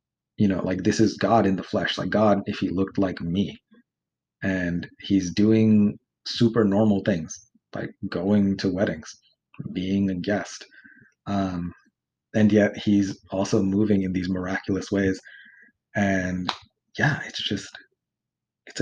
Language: English